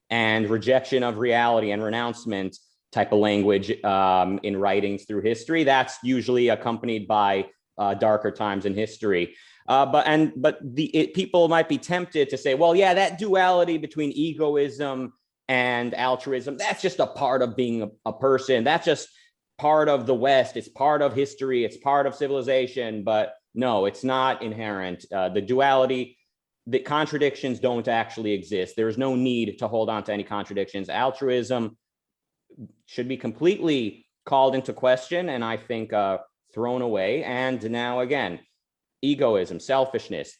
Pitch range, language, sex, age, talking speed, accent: 105-135 Hz, English, male, 30-49, 160 wpm, American